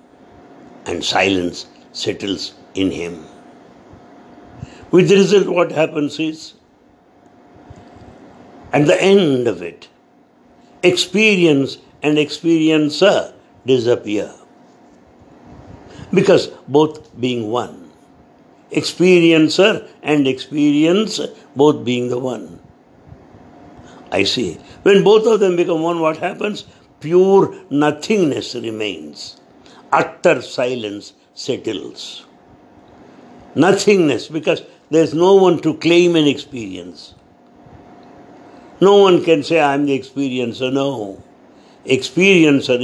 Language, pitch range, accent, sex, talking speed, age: English, 125-180 Hz, Indian, male, 95 wpm, 60-79